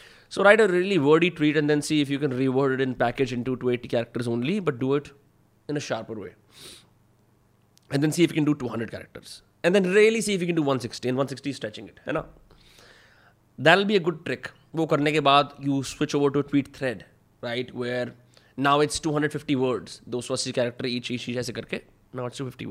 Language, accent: Hindi, native